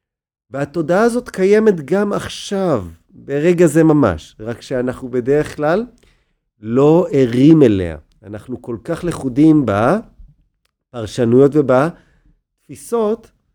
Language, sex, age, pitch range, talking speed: Hebrew, male, 50-69, 115-165 Hz, 95 wpm